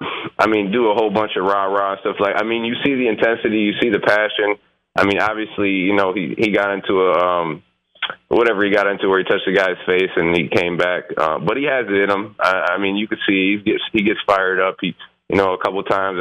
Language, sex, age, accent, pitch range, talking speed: English, male, 20-39, American, 90-110 Hz, 265 wpm